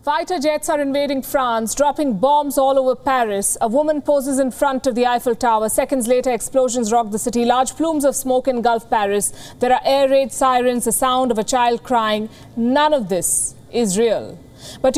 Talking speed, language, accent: 190 wpm, English, Indian